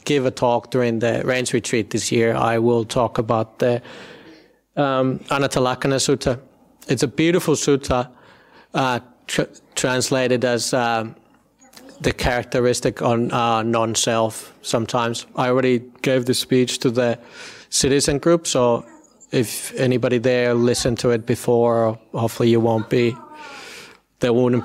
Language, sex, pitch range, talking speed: English, male, 120-140 Hz, 135 wpm